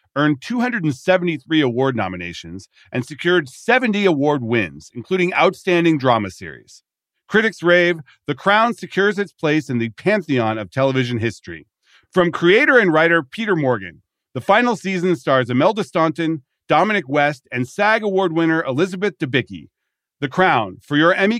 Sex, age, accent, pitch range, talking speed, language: male, 40-59, American, 105-170 Hz, 145 wpm, English